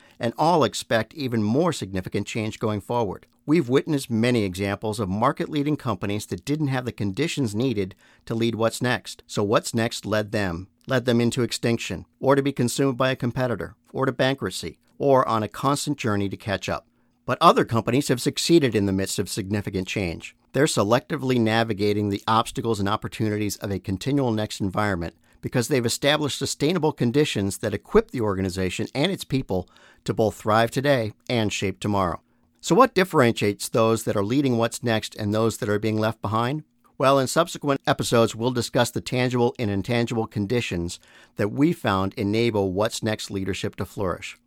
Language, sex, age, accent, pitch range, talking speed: English, male, 50-69, American, 105-130 Hz, 175 wpm